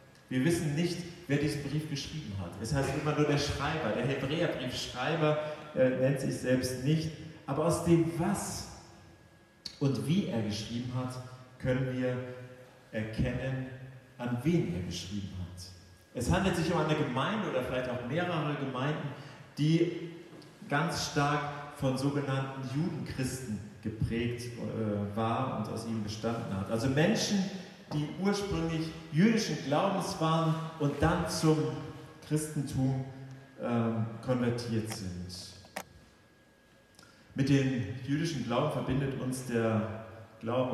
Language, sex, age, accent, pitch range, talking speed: German, male, 40-59, German, 120-155 Hz, 125 wpm